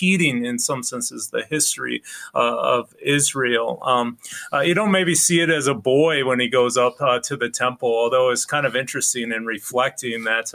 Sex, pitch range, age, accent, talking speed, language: male, 125-150 Hz, 30-49, American, 195 wpm, English